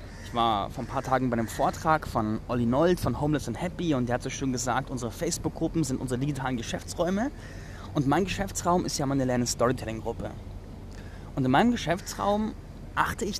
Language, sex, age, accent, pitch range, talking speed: German, male, 20-39, German, 120-175 Hz, 190 wpm